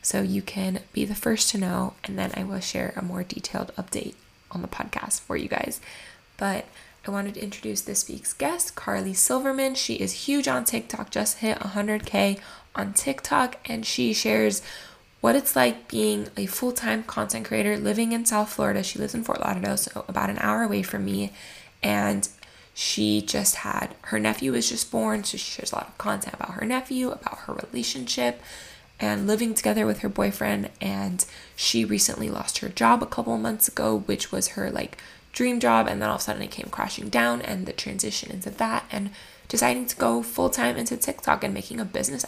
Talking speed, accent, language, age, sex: 200 wpm, American, English, 10-29, female